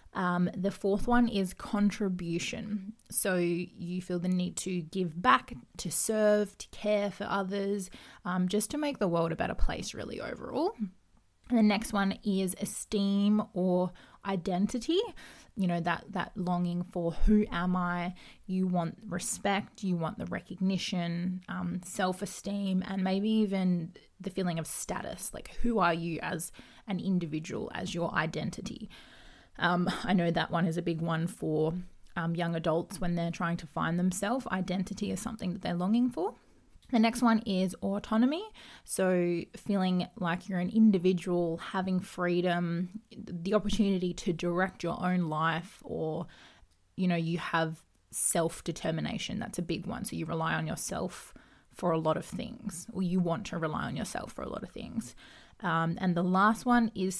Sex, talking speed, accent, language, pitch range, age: female, 165 wpm, Australian, English, 175-205 Hz, 20-39